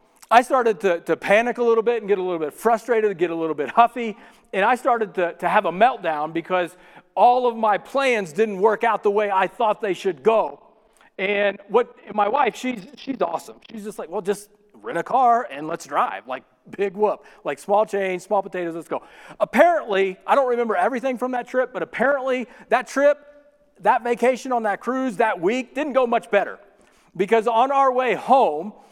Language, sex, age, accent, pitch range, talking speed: English, male, 40-59, American, 200-255 Hz, 205 wpm